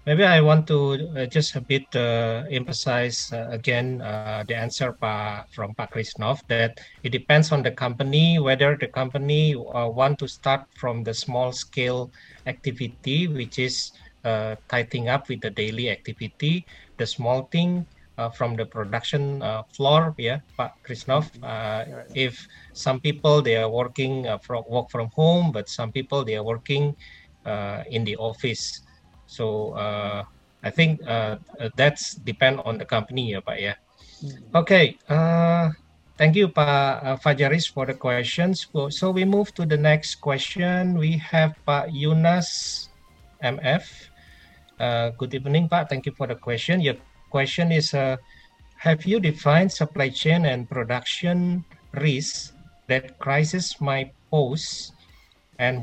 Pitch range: 115-155 Hz